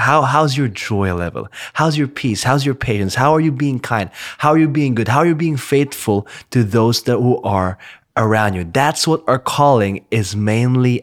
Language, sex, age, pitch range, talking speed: English, male, 20-39, 110-140 Hz, 210 wpm